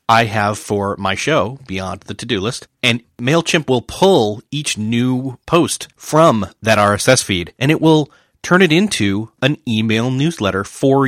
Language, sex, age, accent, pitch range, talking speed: English, male, 30-49, American, 100-130 Hz, 160 wpm